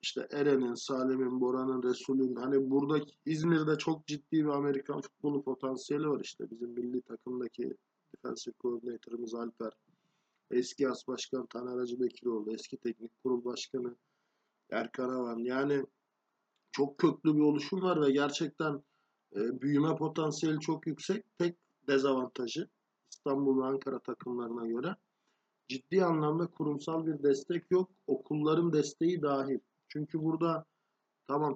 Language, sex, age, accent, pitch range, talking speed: Turkish, male, 50-69, native, 130-160 Hz, 120 wpm